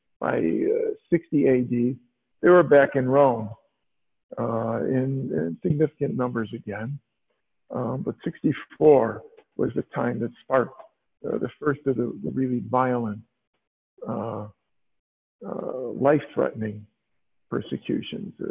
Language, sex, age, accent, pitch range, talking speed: English, male, 60-79, American, 115-140 Hz, 110 wpm